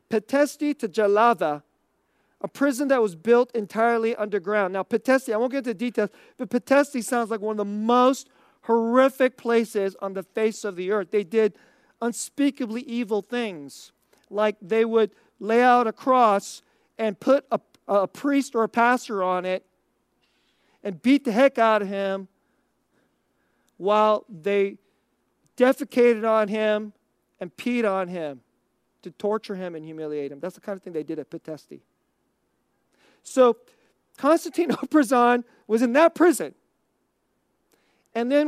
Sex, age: male, 40-59